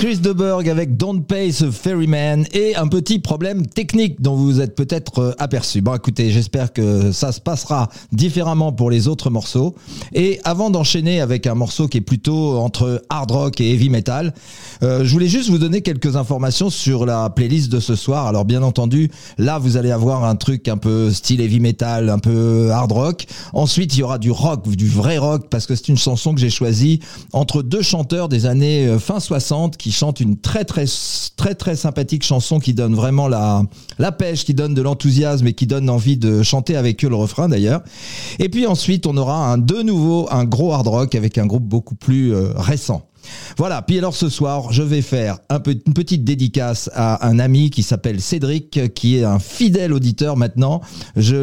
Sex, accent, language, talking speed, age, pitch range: male, French, French, 205 wpm, 40-59, 120-155 Hz